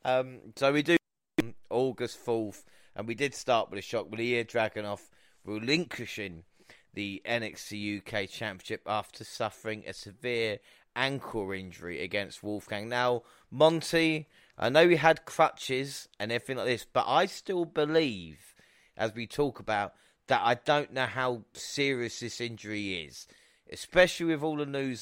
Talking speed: 155 wpm